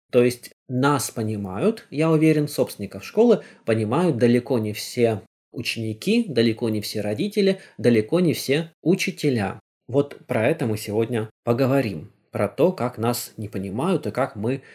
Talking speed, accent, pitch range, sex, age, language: 145 wpm, native, 110-150 Hz, male, 20-39, Russian